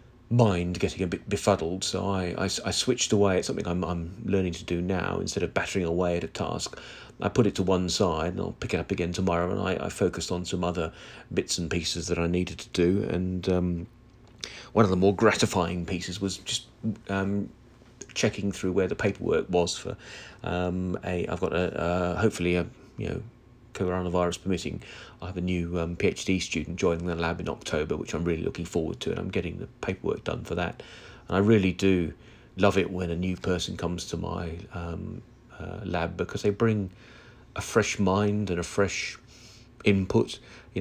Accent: British